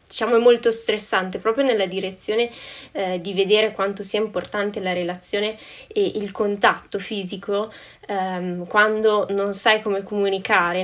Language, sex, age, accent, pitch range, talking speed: Italian, female, 20-39, native, 190-220 Hz, 140 wpm